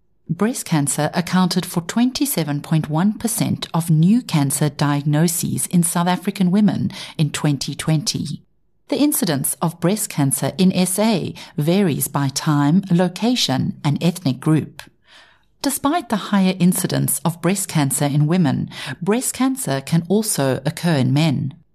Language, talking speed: English, 125 wpm